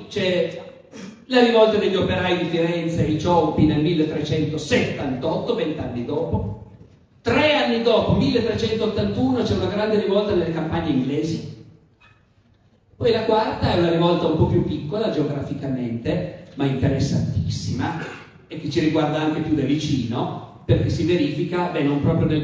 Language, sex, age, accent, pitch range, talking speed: Italian, male, 40-59, native, 145-185 Hz, 140 wpm